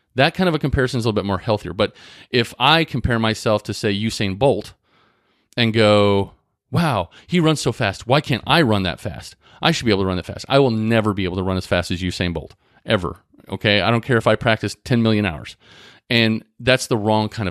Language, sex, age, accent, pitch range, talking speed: English, male, 40-59, American, 100-125 Hz, 235 wpm